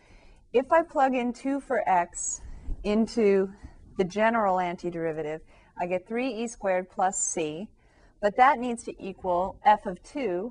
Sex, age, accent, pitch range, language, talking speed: female, 40-59, American, 170-205 Hz, English, 150 wpm